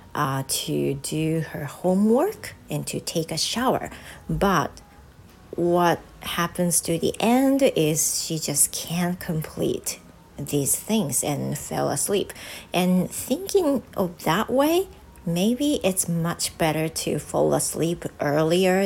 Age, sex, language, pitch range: 40-59, female, Japanese, 150-195 Hz